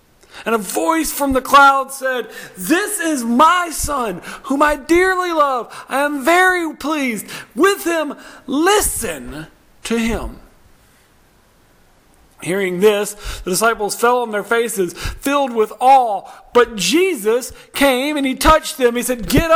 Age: 40-59